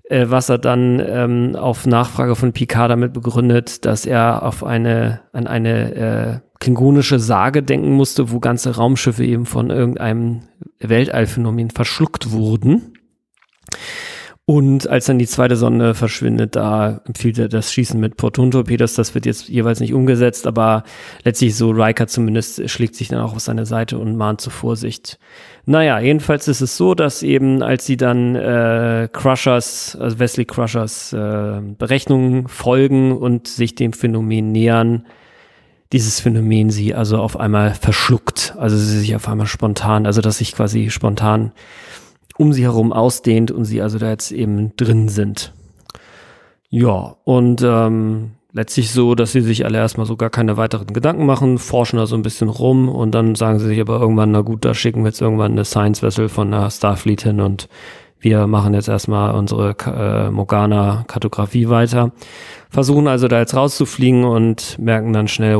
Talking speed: 165 wpm